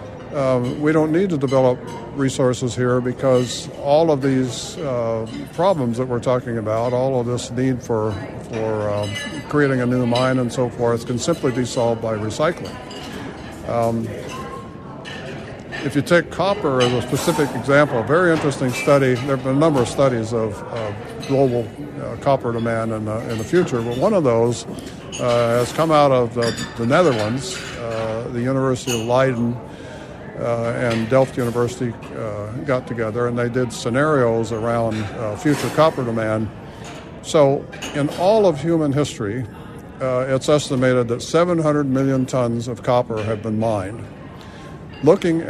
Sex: male